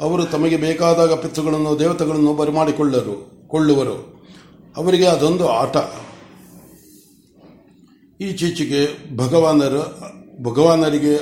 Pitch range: 145-175 Hz